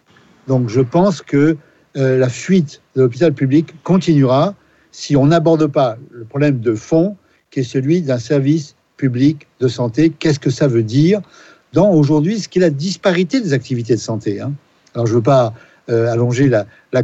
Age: 50-69